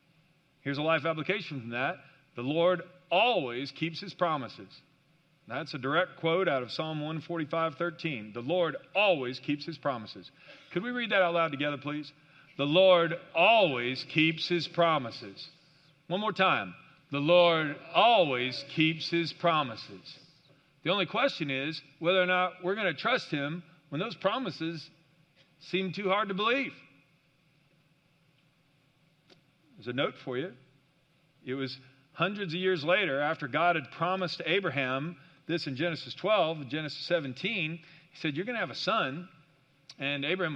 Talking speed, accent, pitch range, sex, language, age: 150 wpm, American, 140-175 Hz, male, English, 50-69